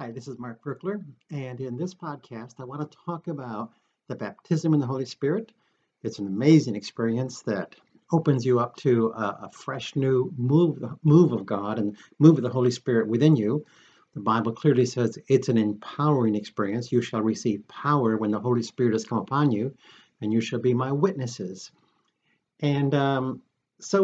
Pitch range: 115-150 Hz